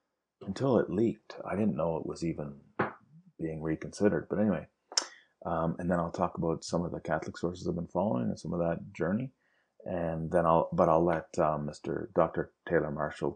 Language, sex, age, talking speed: English, male, 30-49, 195 wpm